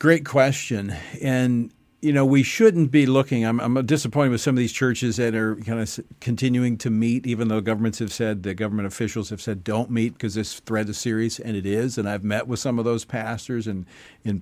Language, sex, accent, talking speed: English, male, American, 225 wpm